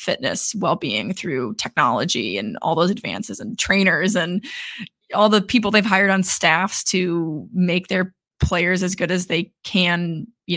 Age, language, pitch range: 20-39, English, 180-200 Hz